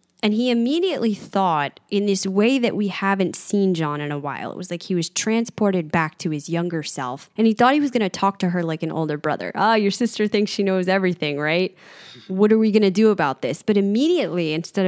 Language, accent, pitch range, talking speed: English, American, 160-210 Hz, 240 wpm